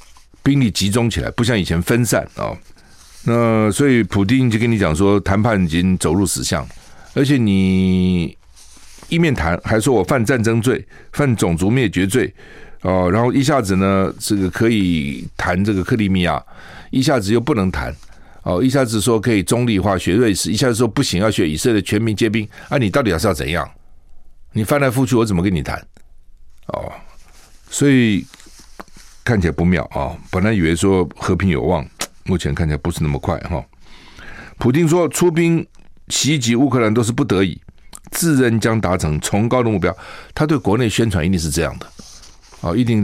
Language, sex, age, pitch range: Chinese, male, 50-69, 90-125 Hz